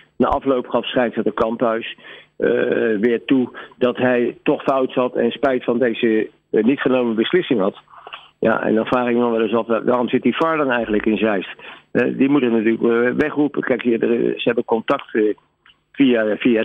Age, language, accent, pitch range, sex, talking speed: 50-69, Dutch, Dutch, 115-130 Hz, male, 200 wpm